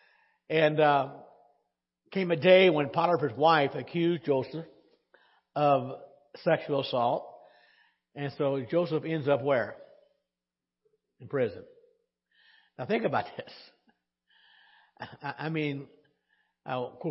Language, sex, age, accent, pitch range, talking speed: English, male, 60-79, American, 140-185 Hz, 100 wpm